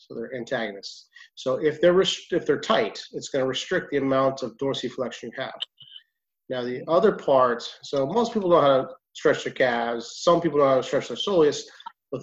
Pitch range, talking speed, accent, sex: 125-165 Hz, 215 wpm, American, male